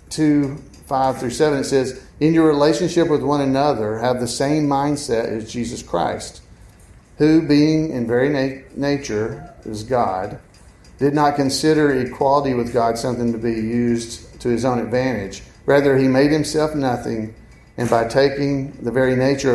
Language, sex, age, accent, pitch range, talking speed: English, male, 50-69, American, 115-145 Hz, 160 wpm